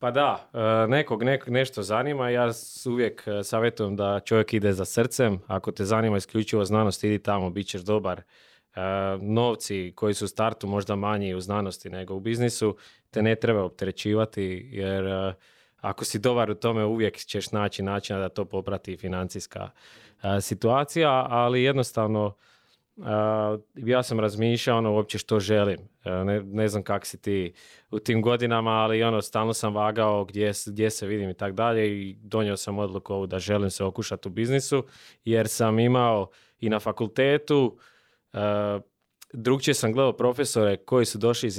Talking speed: 165 wpm